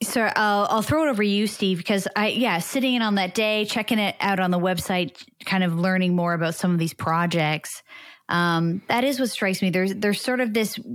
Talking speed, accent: 230 wpm, American